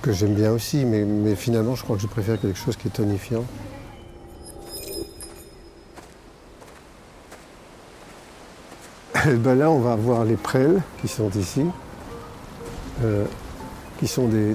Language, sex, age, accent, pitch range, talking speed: French, male, 60-79, French, 105-125 Hz, 130 wpm